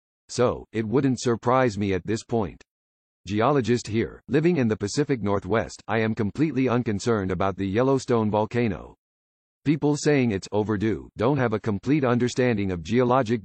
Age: 50-69